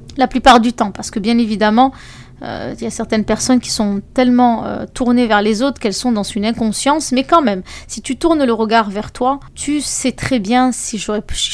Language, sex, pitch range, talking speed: French, female, 215-260 Hz, 230 wpm